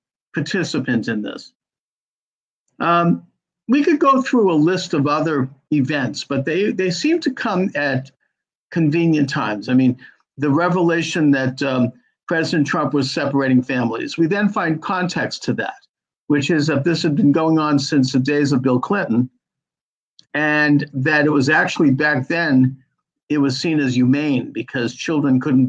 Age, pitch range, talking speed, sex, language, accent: 50-69, 130-165 Hz, 160 wpm, male, English, American